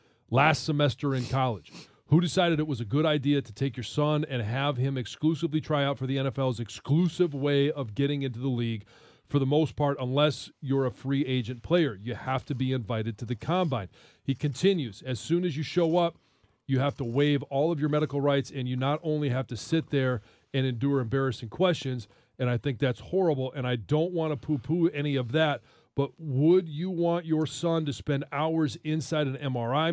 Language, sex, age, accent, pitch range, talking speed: English, male, 40-59, American, 125-155 Hz, 210 wpm